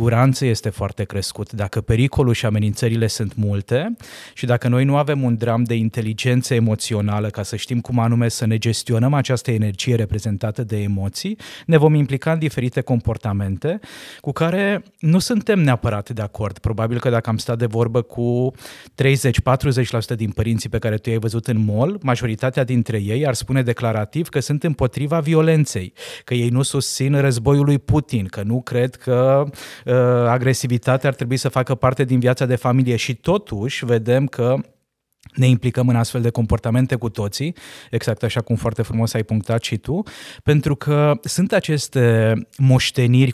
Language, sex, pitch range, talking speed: Romanian, male, 115-135 Hz, 165 wpm